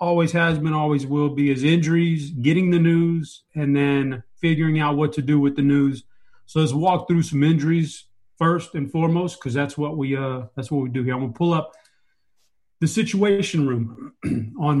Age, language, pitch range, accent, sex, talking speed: 30-49, English, 135-160 Hz, American, male, 195 wpm